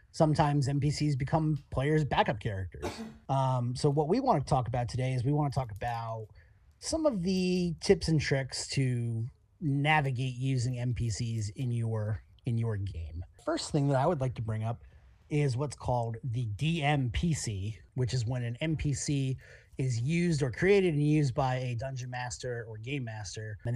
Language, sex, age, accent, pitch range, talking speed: English, male, 30-49, American, 110-145 Hz, 170 wpm